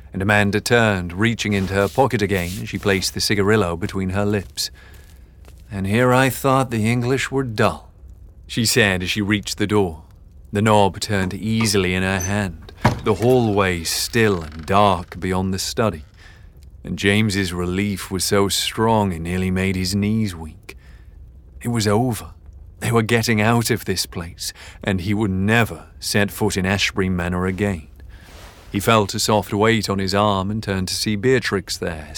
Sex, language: male, English